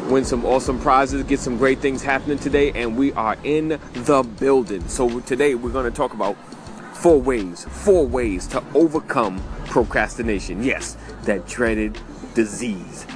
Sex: male